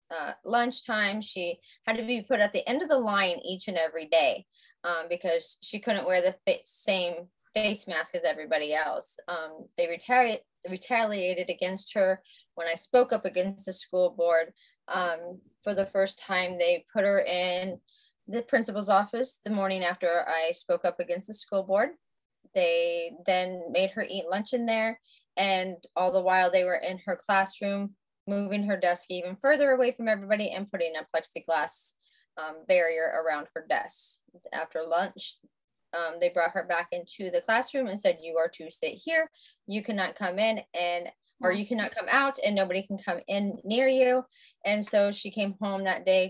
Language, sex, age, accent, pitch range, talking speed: English, female, 20-39, American, 180-245 Hz, 185 wpm